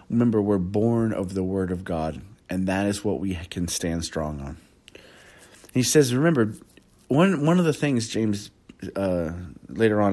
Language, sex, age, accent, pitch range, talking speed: English, male, 40-59, American, 90-125 Hz, 170 wpm